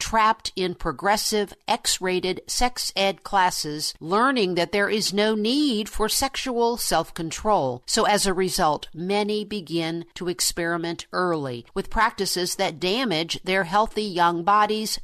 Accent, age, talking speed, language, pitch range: American, 50-69, 130 wpm, English, 170-210 Hz